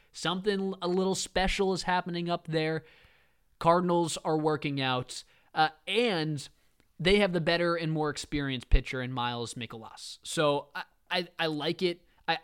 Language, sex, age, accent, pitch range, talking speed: English, male, 20-39, American, 140-180 Hz, 155 wpm